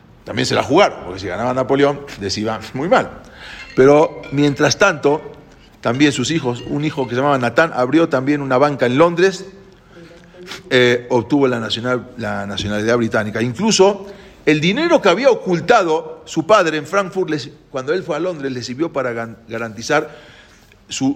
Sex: male